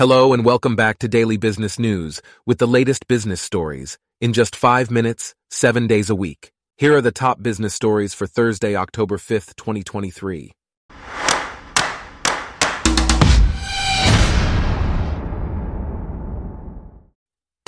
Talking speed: 110 wpm